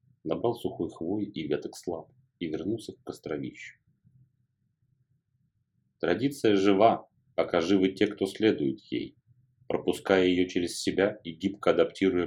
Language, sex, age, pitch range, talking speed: Russian, male, 40-59, 95-125 Hz, 120 wpm